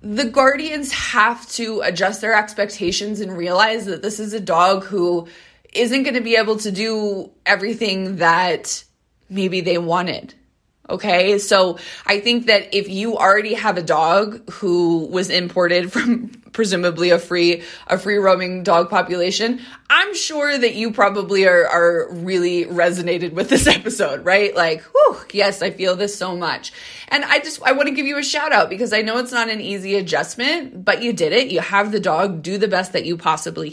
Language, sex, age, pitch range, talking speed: English, female, 20-39, 190-290 Hz, 185 wpm